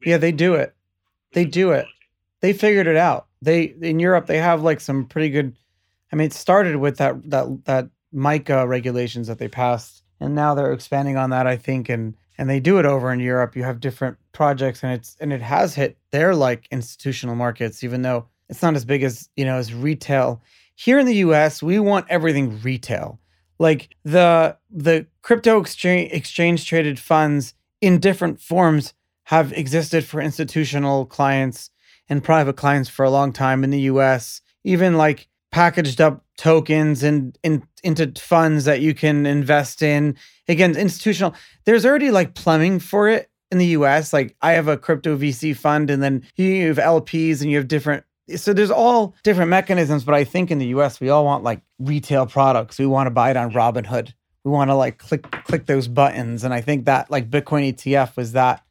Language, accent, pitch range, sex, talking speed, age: English, American, 130-165 Hz, male, 195 wpm, 30-49